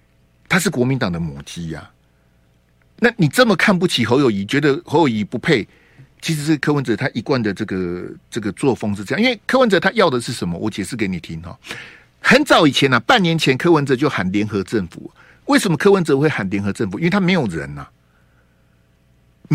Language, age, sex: Chinese, 50-69, male